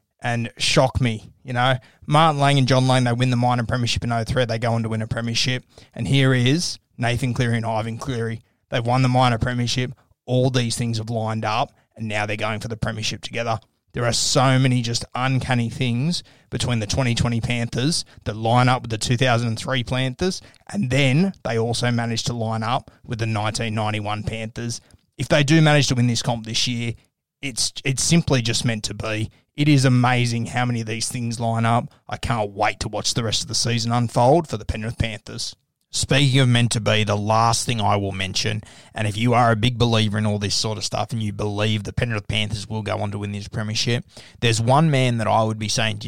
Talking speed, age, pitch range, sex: 220 wpm, 20-39, 110-125 Hz, male